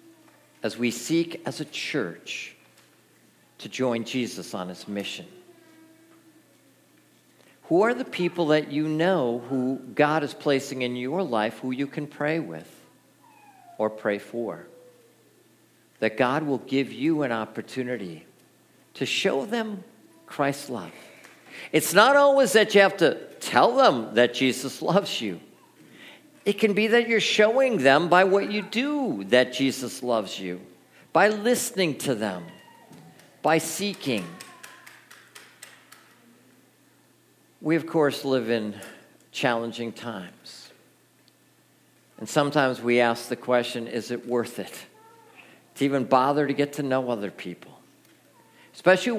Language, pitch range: English, 120-205 Hz